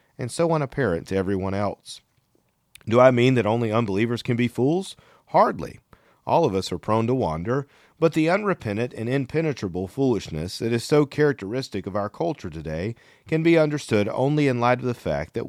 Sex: male